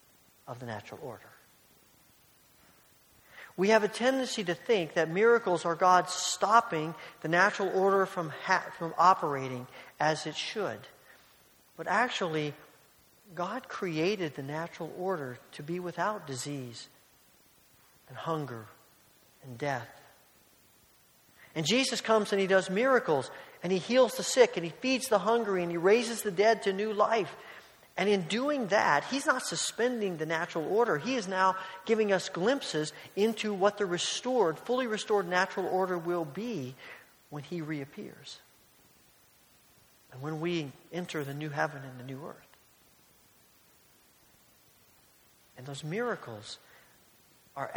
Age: 40-59